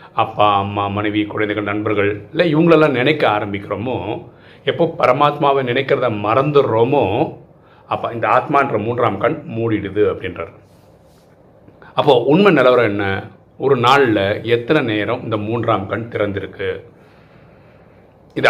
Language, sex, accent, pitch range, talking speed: Tamil, male, native, 105-130 Hz, 105 wpm